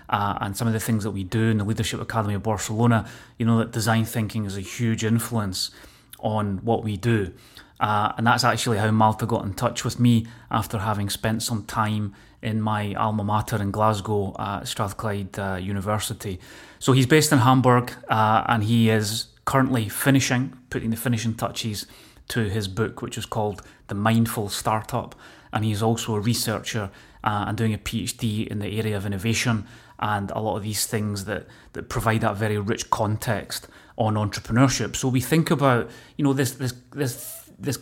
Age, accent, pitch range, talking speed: 30-49, British, 105-120 Hz, 185 wpm